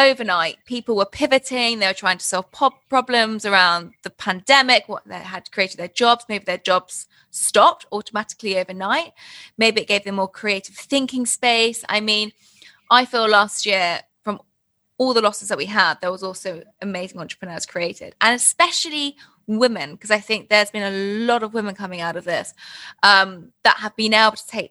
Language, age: English, 20-39